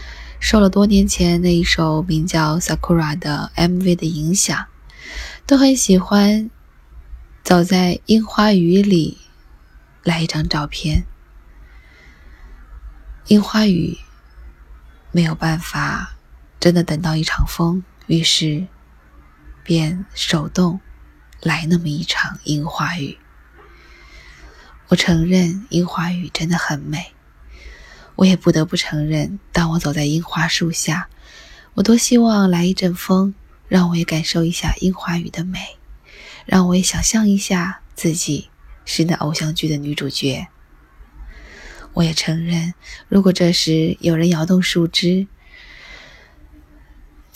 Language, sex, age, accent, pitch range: Chinese, female, 20-39, native, 135-185 Hz